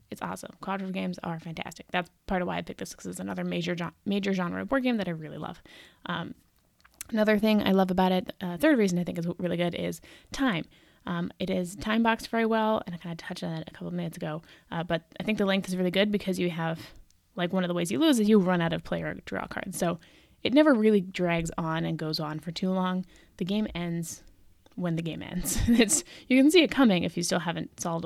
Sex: female